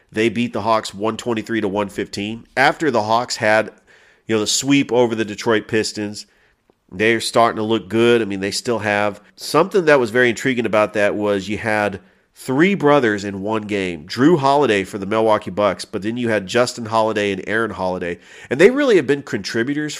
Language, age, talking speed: English, 40-59, 195 wpm